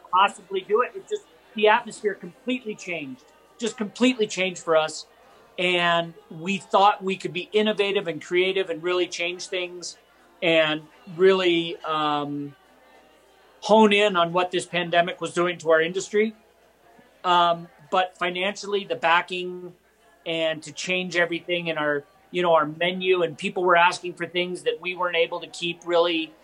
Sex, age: male, 40-59